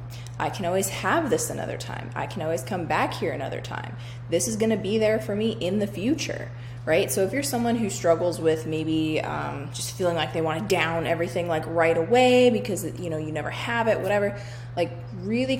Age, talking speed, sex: 20-39, 220 wpm, female